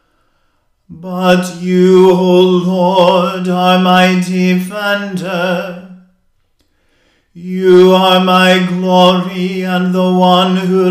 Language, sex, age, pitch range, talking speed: English, male, 40-59, 180-185 Hz, 85 wpm